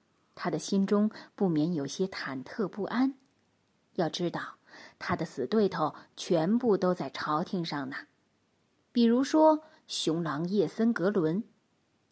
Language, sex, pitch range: Chinese, female, 175-270 Hz